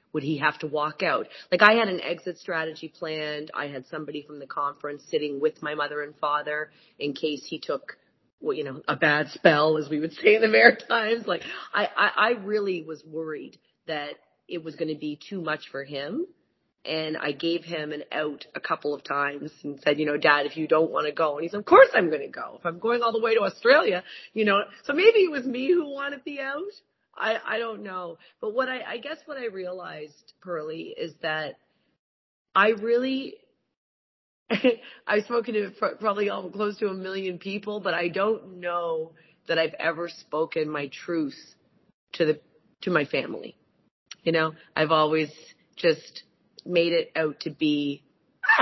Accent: American